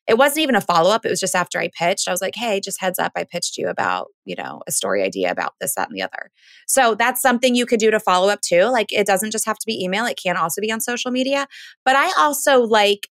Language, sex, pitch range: English, female, 190-250 Hz